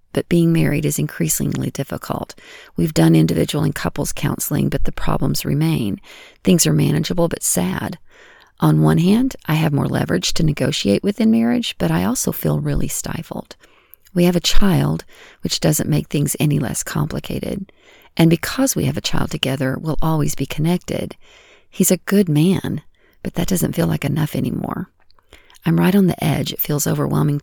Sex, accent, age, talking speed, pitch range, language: female, American, 40-59, 175 wpm, 140-175 Hz, English